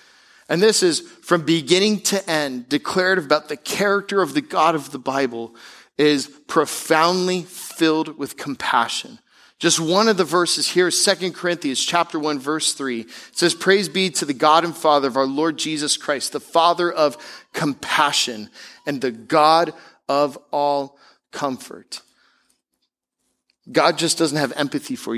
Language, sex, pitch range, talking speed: English, male, 135-175 Hz, 155 wpm